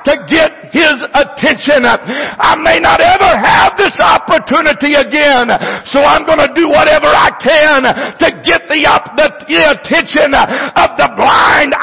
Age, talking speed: 60-79, 140 wpm